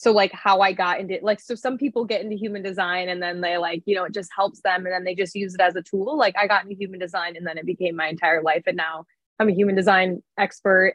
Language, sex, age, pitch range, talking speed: English, female, 20-39, 180-205 Hz, 295 wpm